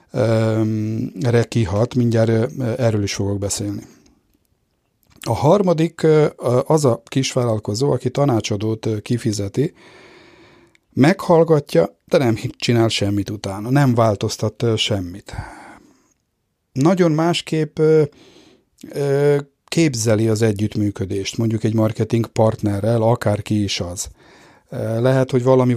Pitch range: 110-140 Hz